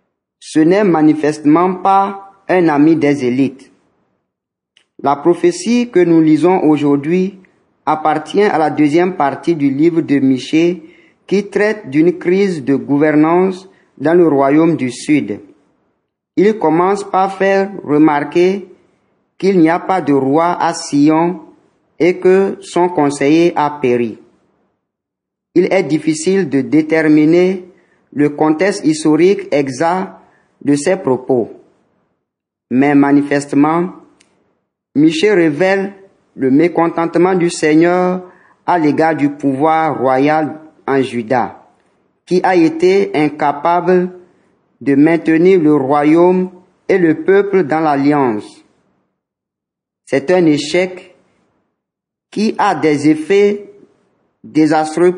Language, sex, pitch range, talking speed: French, male, 150-190 Hz, 110 wpm